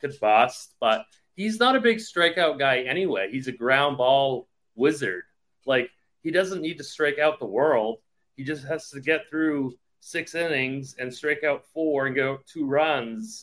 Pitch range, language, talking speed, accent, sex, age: 115-150 Hz, English, 180 wpm, American, male, 30-49